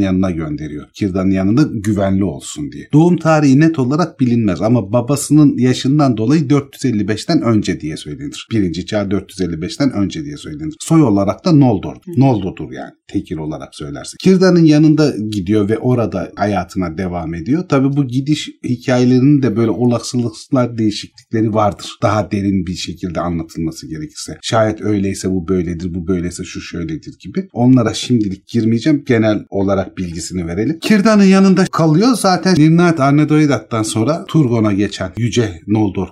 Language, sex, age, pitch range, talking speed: Turkish, male, 40-59, 100-145 Hz, 140 wpm